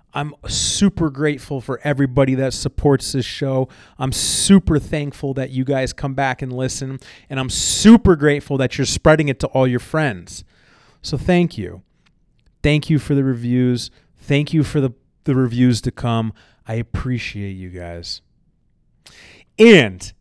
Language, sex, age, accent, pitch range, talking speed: English, male, 30-49, American, 120-165 Hz, 155 wpm